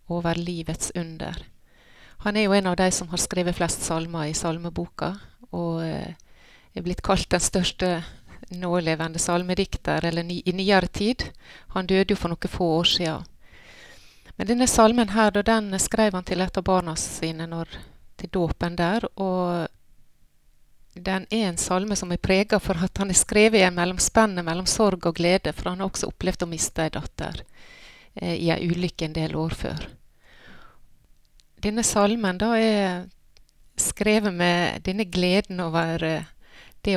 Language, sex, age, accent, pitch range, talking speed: English, female, 30-49, Swedish, 170-200 Hz, 160 wpm